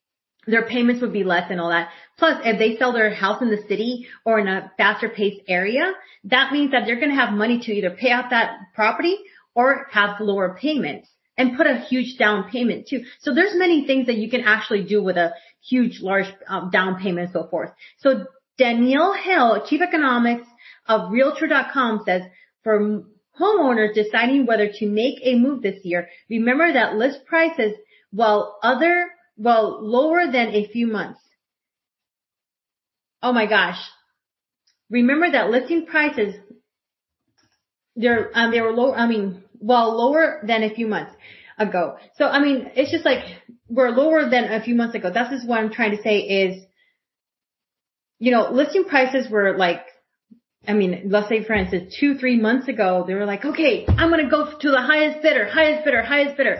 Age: 30-49